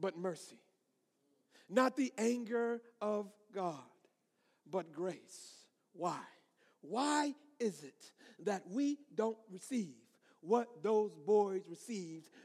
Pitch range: 165-220 Hz